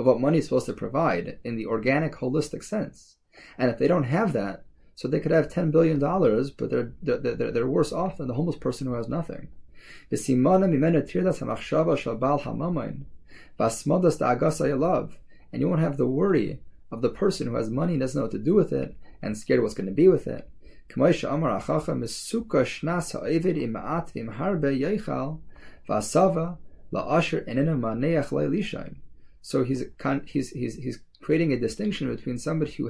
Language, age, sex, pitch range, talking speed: English, 30-49, male, 120-160 Hz, 145 wpm